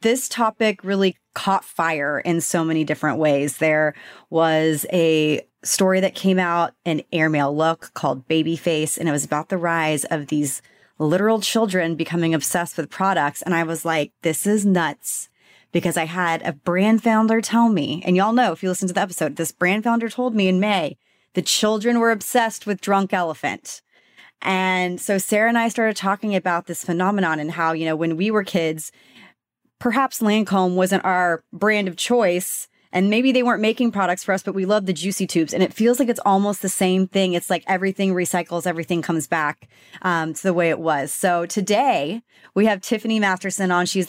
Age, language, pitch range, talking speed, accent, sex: 30-49, English, 165-205 Hz, 195 wpm, American, female